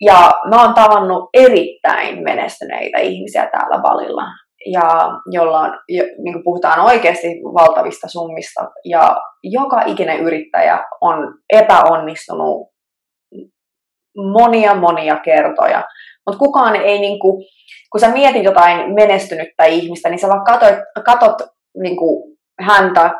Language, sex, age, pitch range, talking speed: Finnish, female, 20-39, 180-225 Hz, 115 wpm